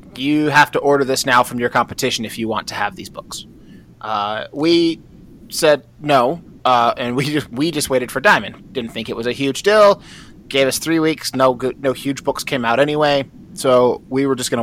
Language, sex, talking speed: English, male, 210 wpm